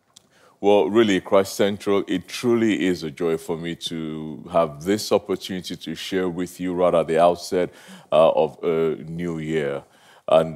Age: 30-49